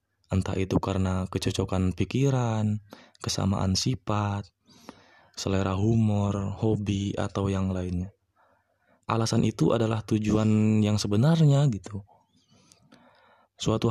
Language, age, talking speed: Indonesian, 20-39, 90 wpm